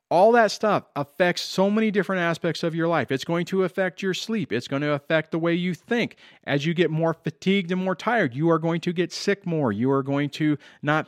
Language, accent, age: English, American, 40-59